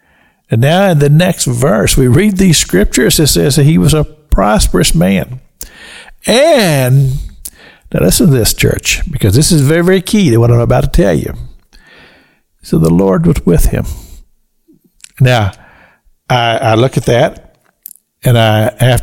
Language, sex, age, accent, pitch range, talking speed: English, male, 60-79, American, 125-165 Hz, 165 wpm